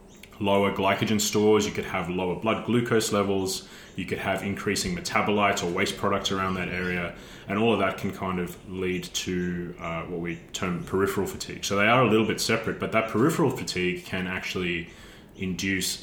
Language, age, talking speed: English, 20-39, 185 wpm